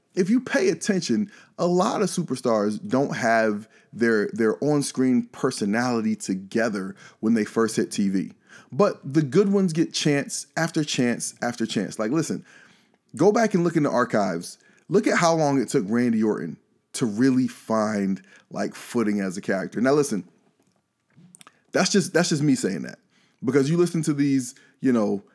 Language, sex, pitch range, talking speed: English, male, 115-180 Hz, 170 wpm